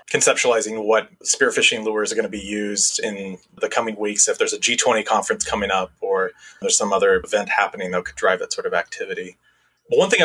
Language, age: English, 20-39